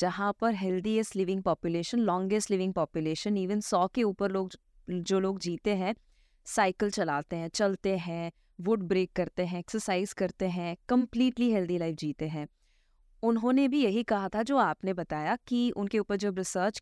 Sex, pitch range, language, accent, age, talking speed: female, 185-235 Hz, Hindi, native, 20-39, 170 wpm